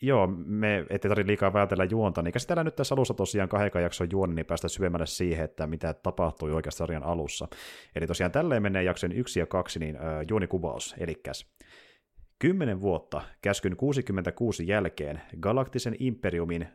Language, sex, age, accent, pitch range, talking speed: Finnish, male, 30-49, native, 85-110 Hz, 160 wpm